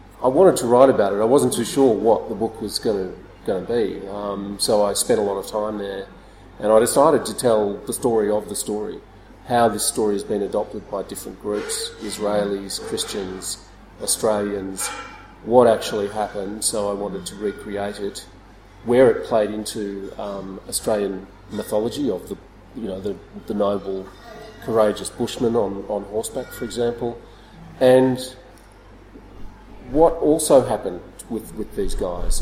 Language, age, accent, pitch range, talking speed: English, 40-59, Australian, 100-110 Hz, 155 wpm